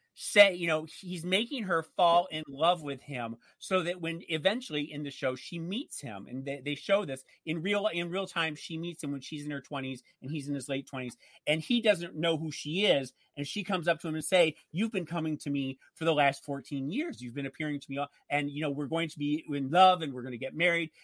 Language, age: English, 40-59